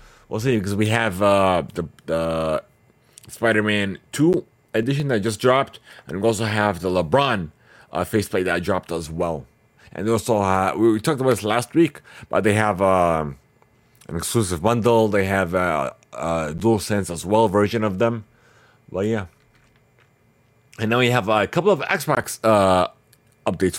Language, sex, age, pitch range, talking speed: English, male, 30-49, 100-125 Hz, 170 wpm